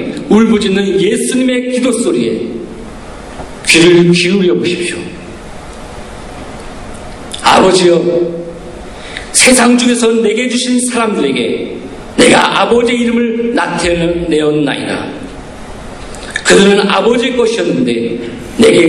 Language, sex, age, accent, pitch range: Korean, male, 40-59, native, 170-245 Hz